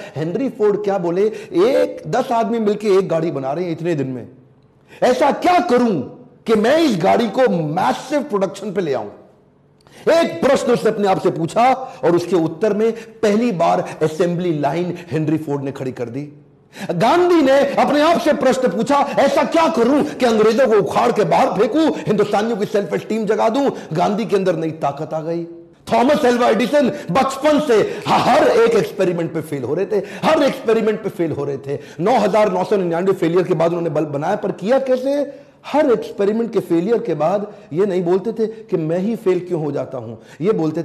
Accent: native